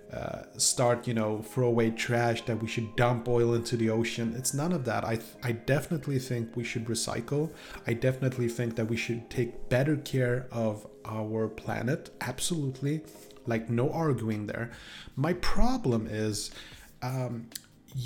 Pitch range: 115-140 Hz